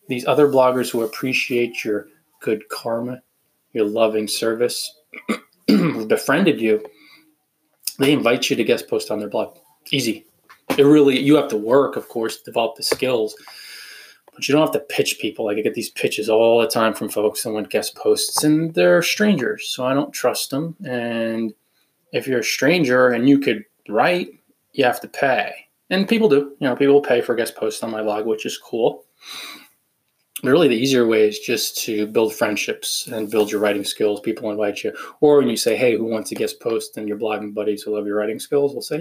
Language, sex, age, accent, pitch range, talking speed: English, male, 20-39, American, 110-155 Hz, 200 wpm